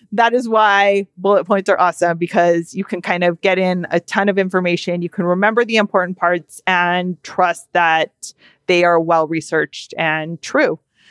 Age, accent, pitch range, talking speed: 30-49, American, 170-220 Hz, 175 wpm